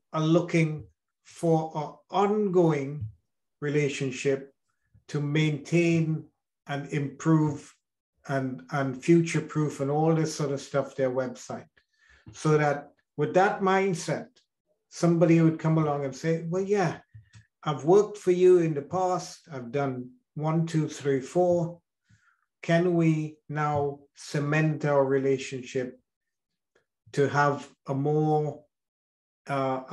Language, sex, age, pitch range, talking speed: English, male, 50-69, 130-160 Hz, 115 wpm